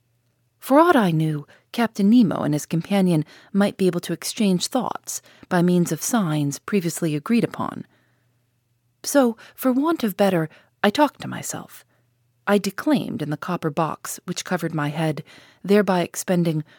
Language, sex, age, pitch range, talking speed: English, female, 40-59, 150-220 Hz, 155 wpm